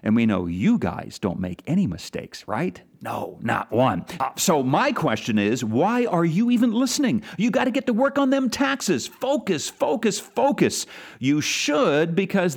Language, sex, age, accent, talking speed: English, male, 40-59, American, 175 wpm